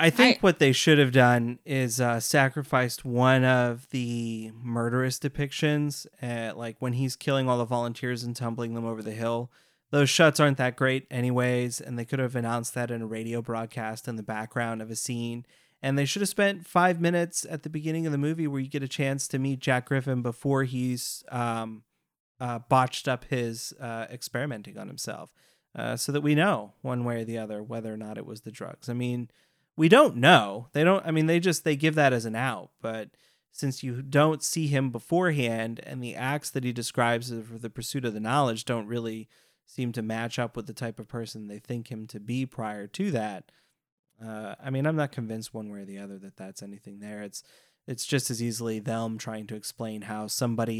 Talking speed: 215 wpm